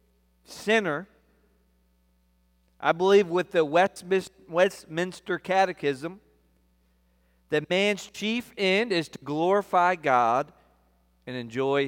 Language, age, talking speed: English, 40-59, 85 wpm